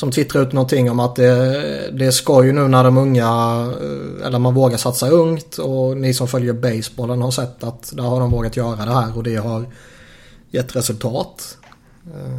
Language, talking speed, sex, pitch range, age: Swedish, 190 wpm, male, 120-130 Hz, 20-39